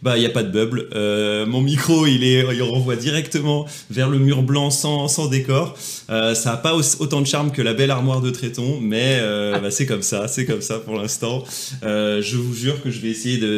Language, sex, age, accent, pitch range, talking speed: French, male, 30-49, French, 120-160 Hz, 245 wpm